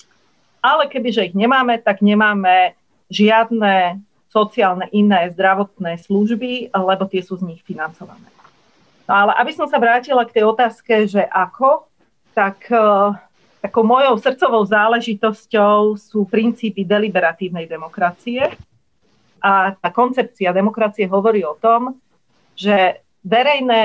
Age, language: 40-59, Slovak